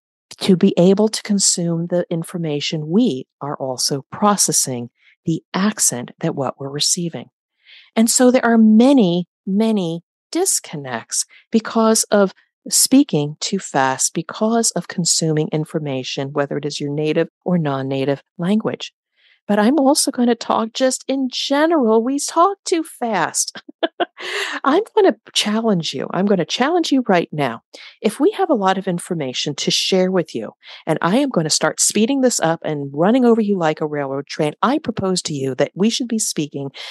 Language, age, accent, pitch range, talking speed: English, 50-69, American, 155-235 Hz, 165 wpm